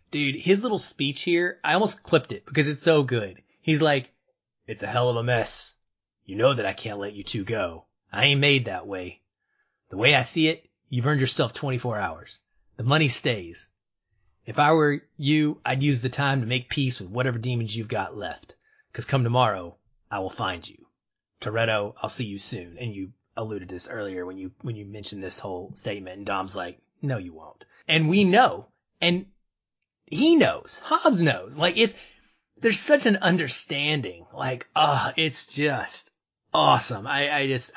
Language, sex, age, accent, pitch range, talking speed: English, male, 30-49, American, 110-155 Hz, 190 wpm